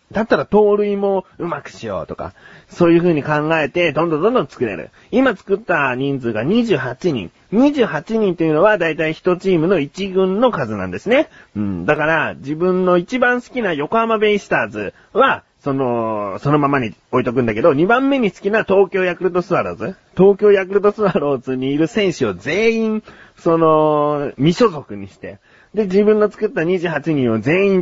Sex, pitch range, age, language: male, 130-195 Hz, 40-59, Japanese